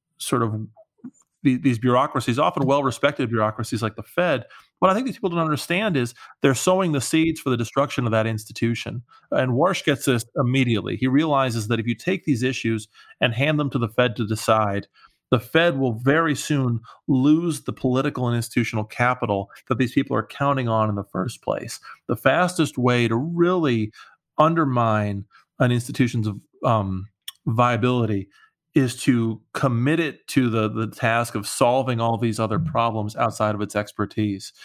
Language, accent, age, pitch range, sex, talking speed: English, American, 30-49, 110-135 Hz, male, 170 wpm